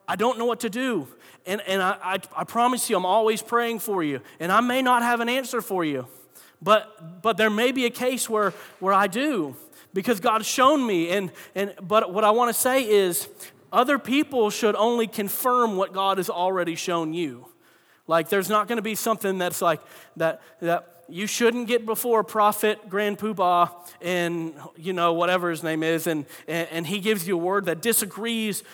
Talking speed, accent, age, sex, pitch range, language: 205 wpm, American, 40-59, male, 170-220 Hz, English